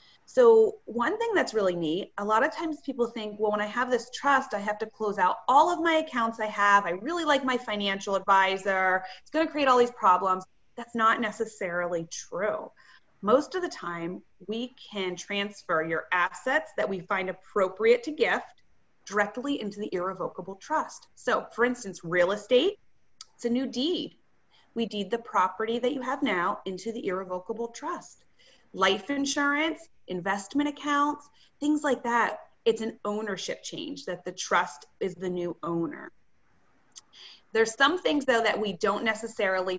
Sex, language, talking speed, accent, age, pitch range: female, English, 170 wpm, American, 30-49, 185-265 Hz